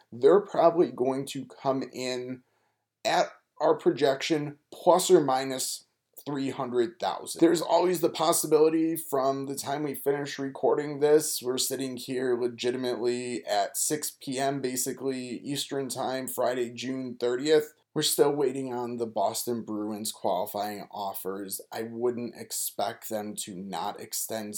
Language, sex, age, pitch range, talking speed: English, male, 20-39, 110-140 Hz, 130 wpm